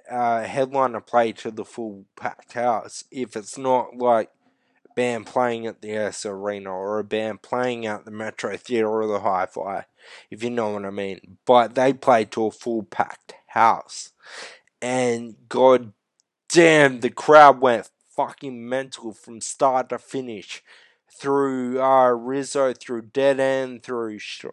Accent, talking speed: Australian, 160 wpm